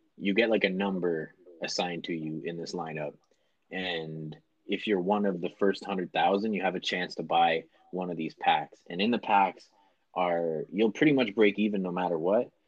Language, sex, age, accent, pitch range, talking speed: English, male, 20-39, American, 85-105 Hz, 205 wpm